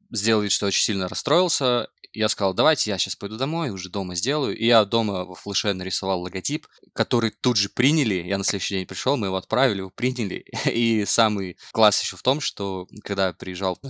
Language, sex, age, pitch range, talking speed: Russian, male, 20-39, 95-115 Hz, 205 wpm